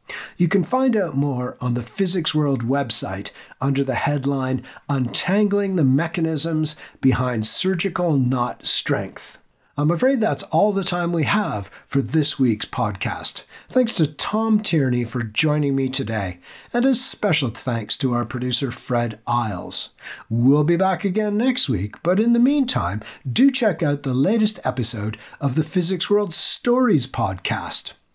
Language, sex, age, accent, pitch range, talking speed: English, male, 50-69, American, 125-185 Hz, 150 wpm